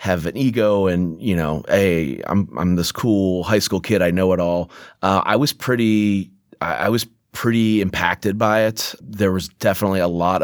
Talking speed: 195 wpm